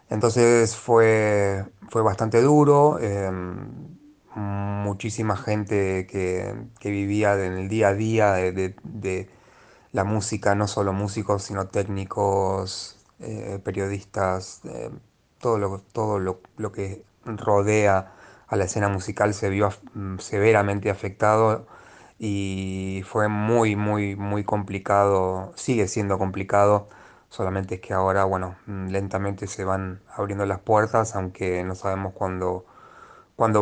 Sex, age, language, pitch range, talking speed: male, 30-49, Spanish, 95-110 Hz, 125 wpm